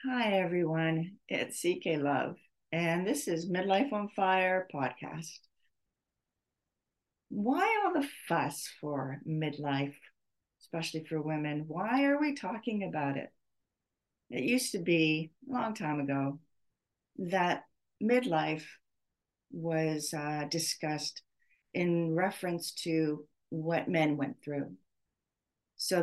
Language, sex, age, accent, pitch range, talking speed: English, female, 60-79, American, 150-190 Hz, 110 wpm